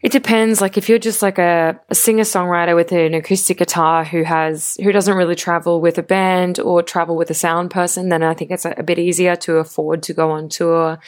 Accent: Australian